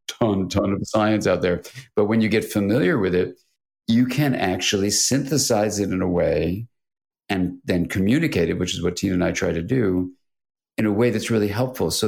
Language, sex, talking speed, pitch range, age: English, male, 205 wpm, 90-110 Hz, 50-69